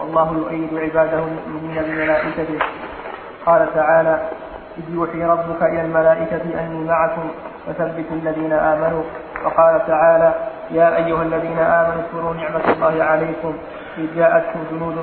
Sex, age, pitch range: male, 20-39, 160-165 Hz